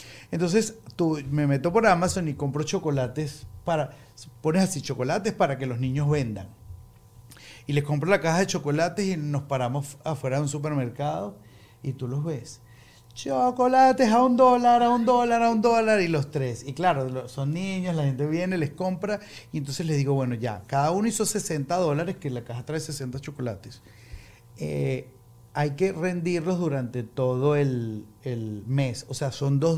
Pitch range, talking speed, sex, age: 125-165 Hz, 175 wpm, male, 30-49